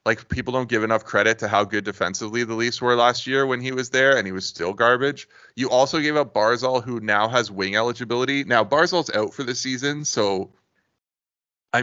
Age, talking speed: 30-49, 215 wpm